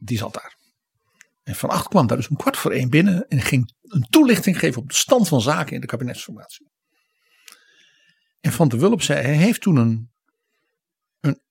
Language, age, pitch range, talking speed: Dutch, 60-79, 130-180 Hz, 195 wpm